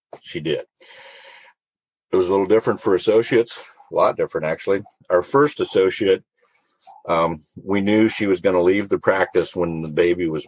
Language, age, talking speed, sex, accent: English, 50-69, 170 wpm, male, American